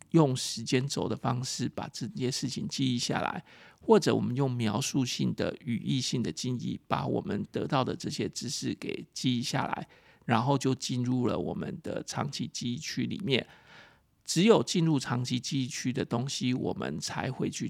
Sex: male